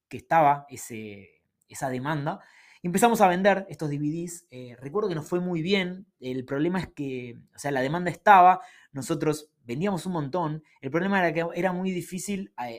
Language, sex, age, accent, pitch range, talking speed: Spanish, male, 20-39, Argentinian, 125-160 Hz, 175 wpm